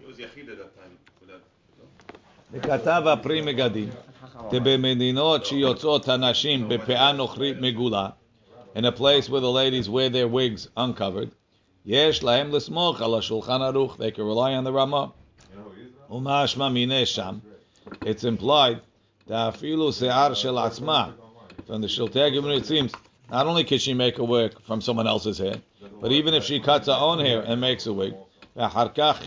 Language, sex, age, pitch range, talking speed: English, male, 50-69, 115-140 Hz, 95 wpm